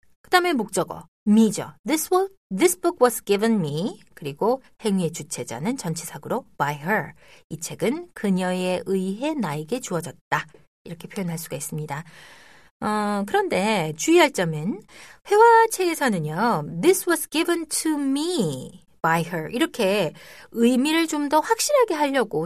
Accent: native